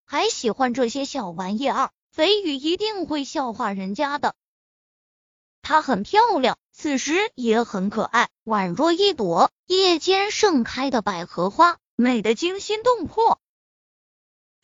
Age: 20-39